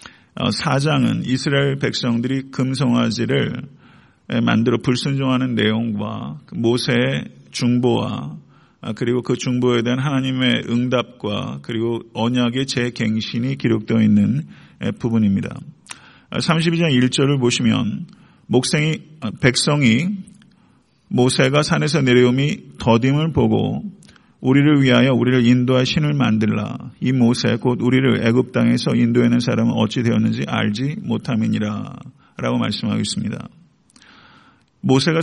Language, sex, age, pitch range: Korean, male, 40-59, 115-140 Hz